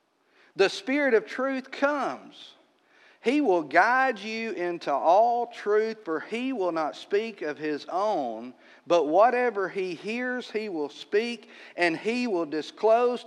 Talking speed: 140 wpm